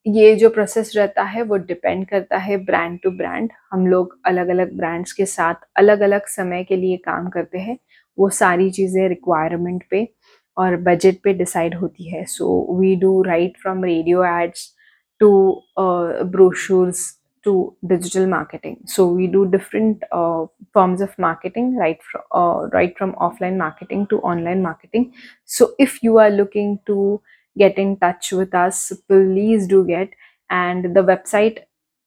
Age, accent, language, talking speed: 20-39, Indian, English, 145 wpm